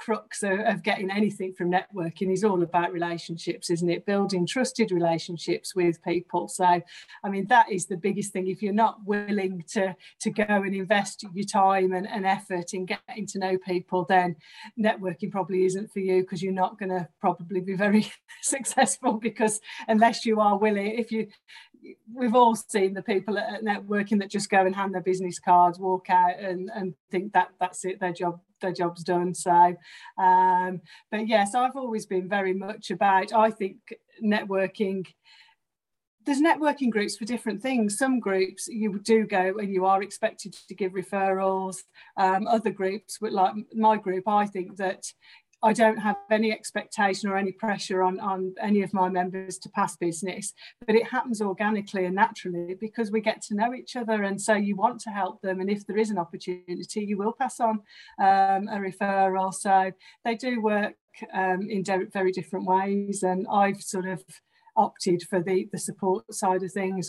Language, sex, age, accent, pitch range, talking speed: English, female, 40-59, British, 185-215 Hz, 185 wpm